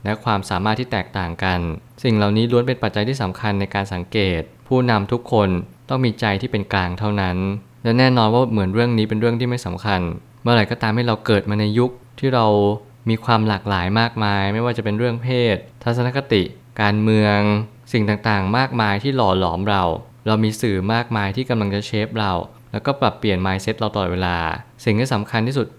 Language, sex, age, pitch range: Thai, male, 20-39, 100-120 Hz